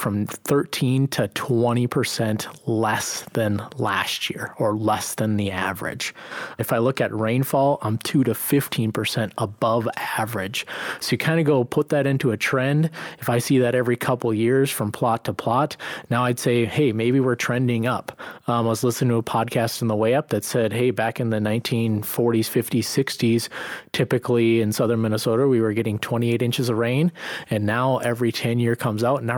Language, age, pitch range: English, 30-49, 105-125 Hz